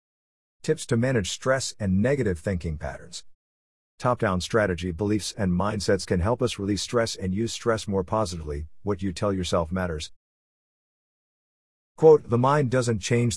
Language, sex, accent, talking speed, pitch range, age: English, male, American, 150 wpm, 90-125 Hz, 50-69